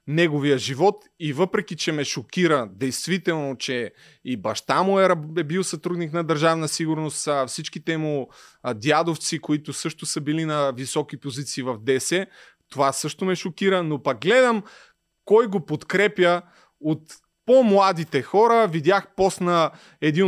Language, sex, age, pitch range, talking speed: Bulgarian, male, 30-49, 145-185 Hz, 140 wpm